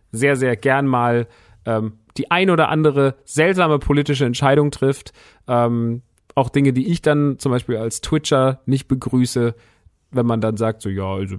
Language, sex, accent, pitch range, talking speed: German, male, German, 110-140 Hz, 170 wpm